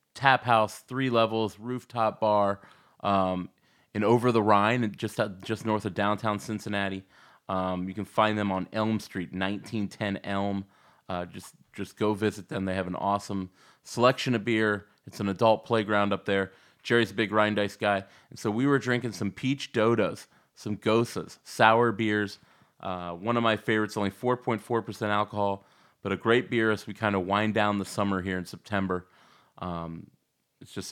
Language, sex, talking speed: English, male, 175 wpm